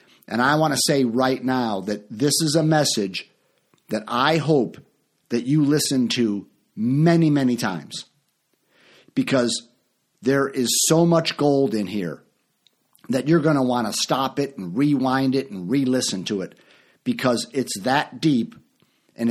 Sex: male